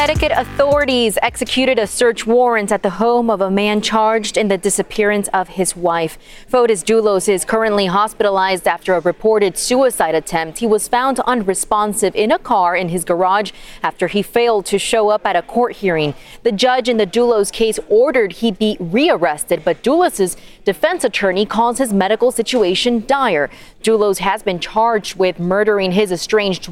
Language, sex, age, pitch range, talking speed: English, female, 20-39, 185-230 Hz, 170 wpm